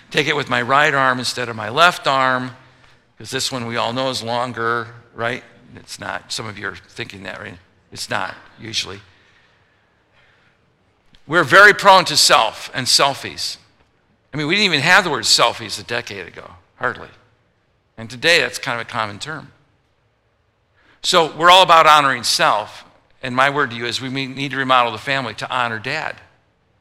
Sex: male